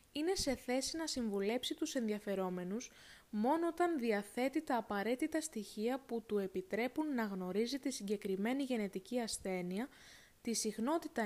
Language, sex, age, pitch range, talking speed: Greek, female, 20-39, 210-275 Hz, 130 wpm